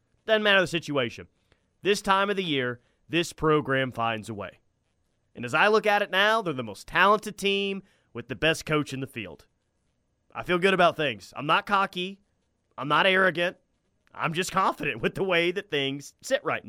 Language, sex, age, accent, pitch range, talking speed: English, male, 30-49, American, 130-175 Hz, 195 wpm